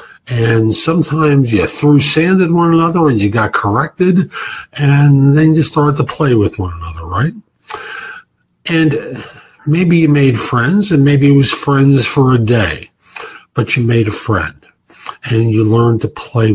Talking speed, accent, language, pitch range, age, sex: 165 wpm, American, English, 110-155 Hz, 50-69, male